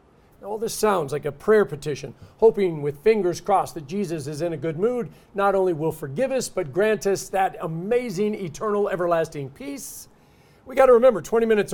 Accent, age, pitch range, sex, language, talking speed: American, 50-69, 155-215 Hz, male, English, 190 wpm